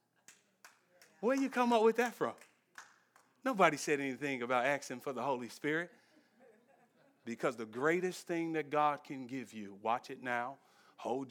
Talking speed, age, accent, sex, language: 155 wpm, 40-59, American, male, English